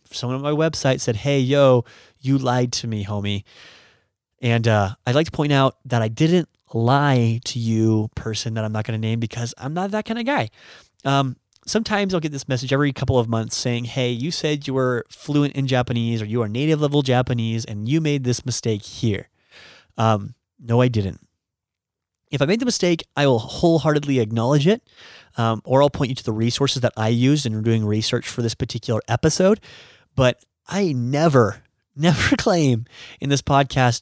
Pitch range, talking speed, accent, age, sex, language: 110-140 Hz, 190 wpm, American, 30-49, male, English